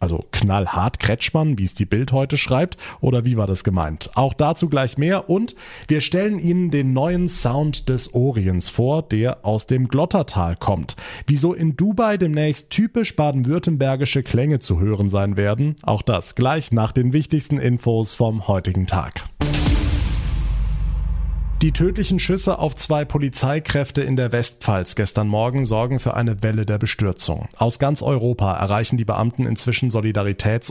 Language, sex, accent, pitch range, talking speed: German, male, German, 110-145 Hz, 155 wpm